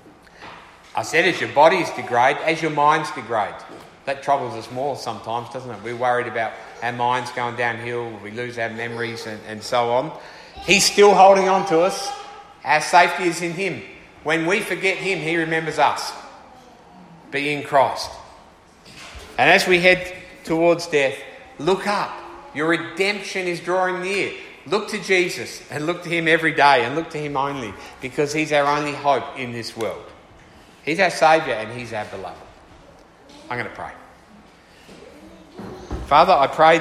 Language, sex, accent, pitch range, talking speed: English, male, Australian, 125-170 Hz, 165 wpm